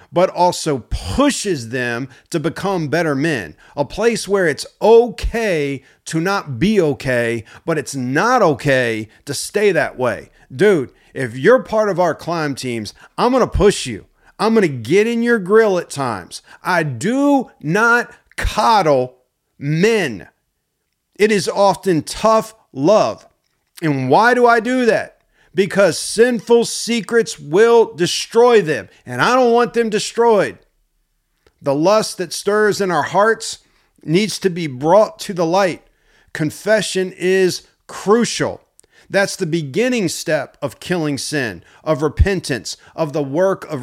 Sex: male